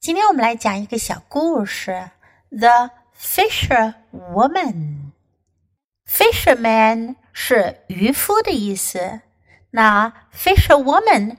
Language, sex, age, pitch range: Chinese, female, 60-79, 190-300 Hz